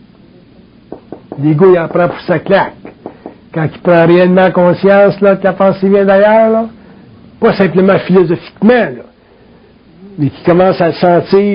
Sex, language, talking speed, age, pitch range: male, French, 155 wpm, 60-79, 175-210 Hz